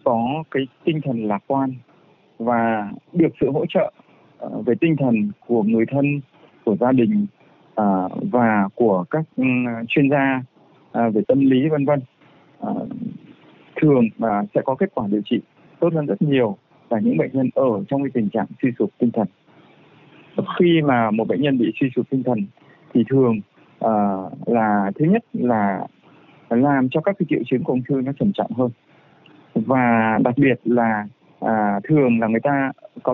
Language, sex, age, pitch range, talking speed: Vietnamese, male, 20-39, 115-155 Hz, 170 wpm